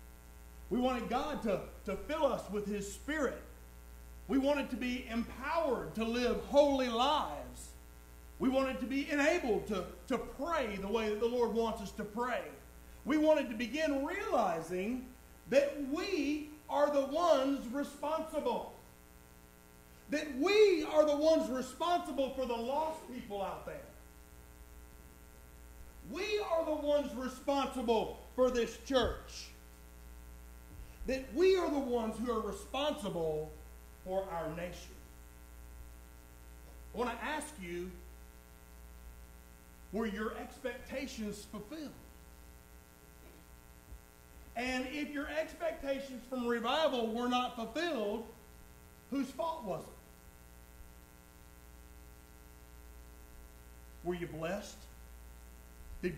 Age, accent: 50-69, American